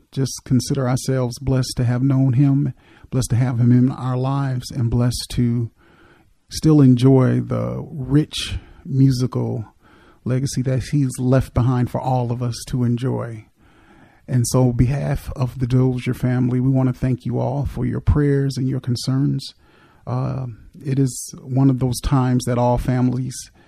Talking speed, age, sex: 155 wpm, 40-59, male